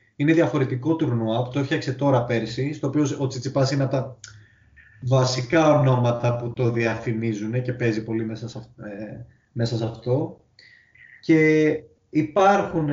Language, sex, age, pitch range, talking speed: Greek, male, 20-39, 115-145 Hz, 130 wpm